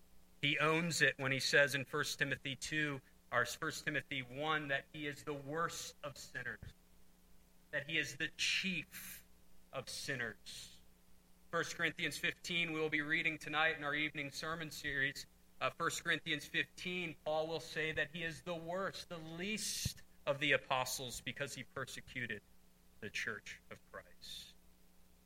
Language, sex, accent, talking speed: English, male, American, 155 wpm